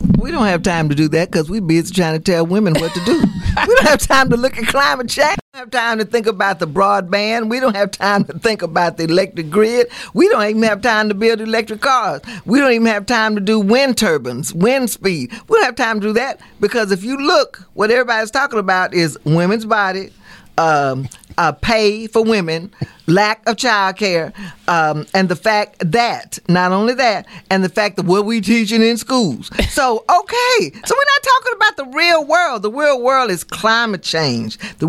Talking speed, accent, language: 215 wpm, American, English